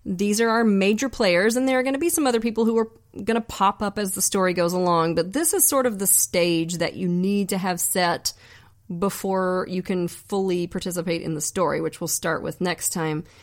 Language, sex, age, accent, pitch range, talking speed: English, female, 30-49, American, 165-205 Hz, 230 wpm